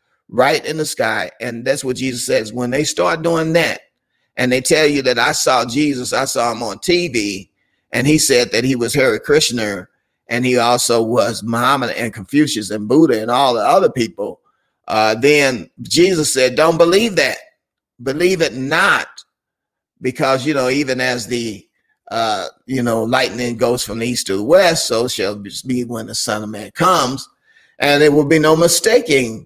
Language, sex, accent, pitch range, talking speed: English, male, American, 115-150 Hz, 180 wpm